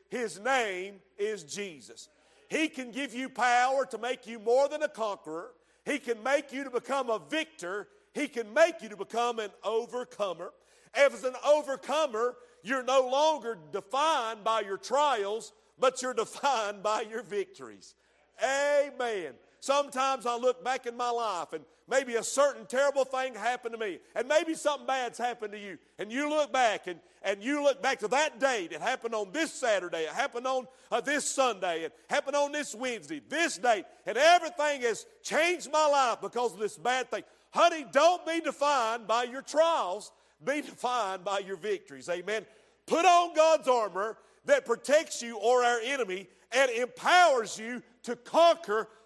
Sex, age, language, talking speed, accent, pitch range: male, 50-69, English, 170 wpm, American, 220-285 Hz